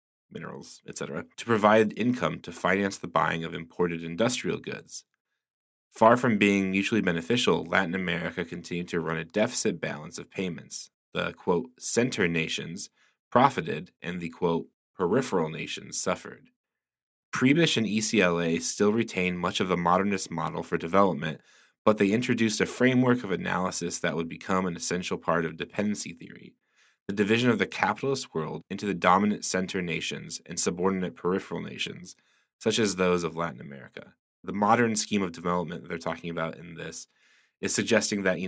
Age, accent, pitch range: 20-39, American, 85-105 Hz